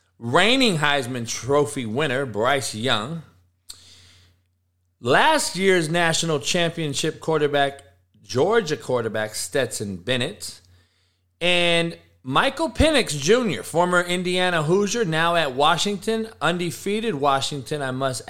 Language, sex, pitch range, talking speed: English, male, 115-175 Hz, 95 wpm